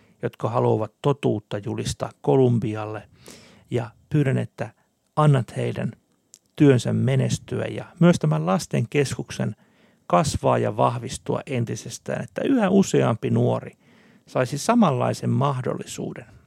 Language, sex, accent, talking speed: Finnish, male, native, 100 wpm